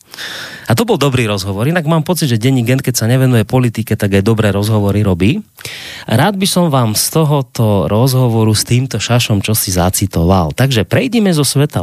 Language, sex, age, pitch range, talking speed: Slovak, male, 30-49, 105-135 Hz, 190 wpm